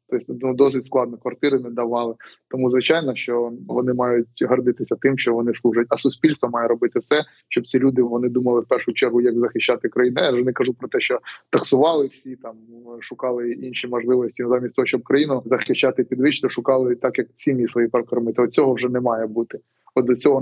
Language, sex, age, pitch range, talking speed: Ukrainian, male, 20-39, 120-130 Hz, 200 wpm